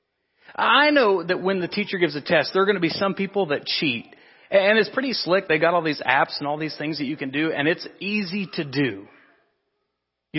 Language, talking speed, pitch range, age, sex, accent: English, 235 wpm, 135-200 Hz, 40-59, male, American